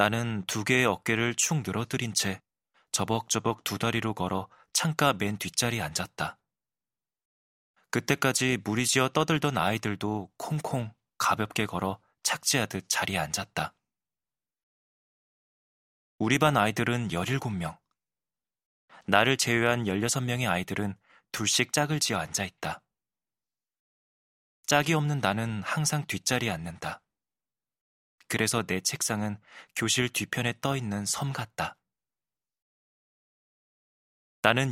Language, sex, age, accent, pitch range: Korean, male, 20-39, native, 105-130 Hz